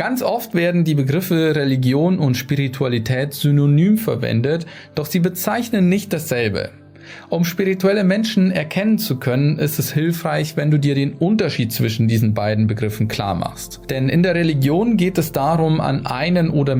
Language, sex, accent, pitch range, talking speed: German, male, German, 130-170 Hz, 160 wpm